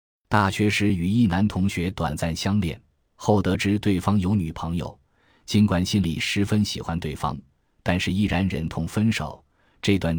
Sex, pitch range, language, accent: male, 85-110 Hz, Chinese, native